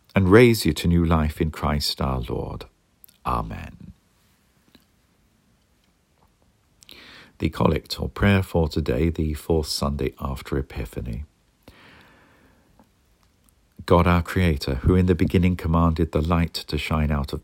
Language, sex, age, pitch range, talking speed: English, male, 50-69, 75-90 Hz, 125 wpm